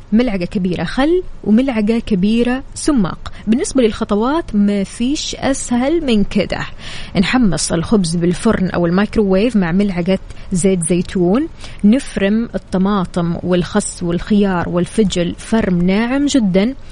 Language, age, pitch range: Arabic, 20-39, 190-250 Hz